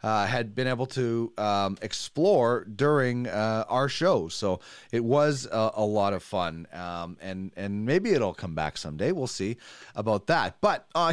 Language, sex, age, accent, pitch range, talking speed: English, male, 30-49, American, 125-175 Hz, 180 wpm